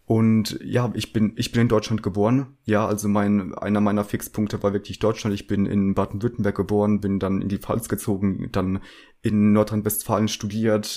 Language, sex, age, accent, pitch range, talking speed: German, male, 30-49, German, 100-110 Hz, 180 wpm